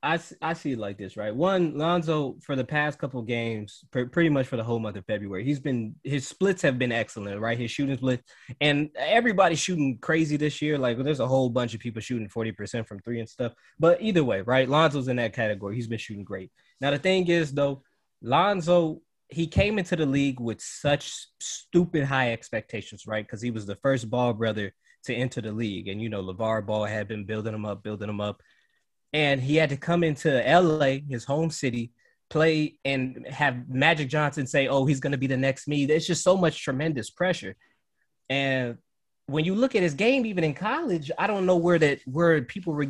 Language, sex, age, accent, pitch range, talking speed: English, male, 20-39, American, 120-160 Hz, 215 wpm